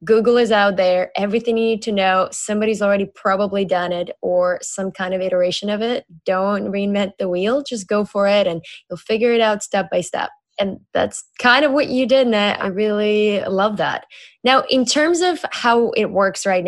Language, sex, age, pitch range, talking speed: English, female, 10-29, 195-230 Hz, 205 wpm